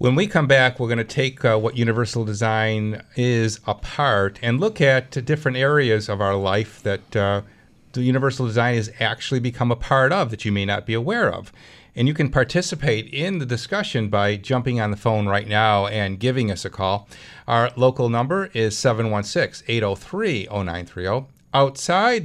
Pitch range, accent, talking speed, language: 105-130 Hz, American, 180 wpm, English